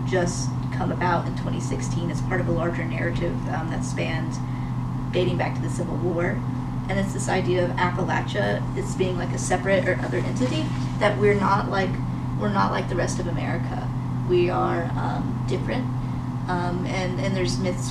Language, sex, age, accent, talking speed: English, female, 20-39, American, 180 wpm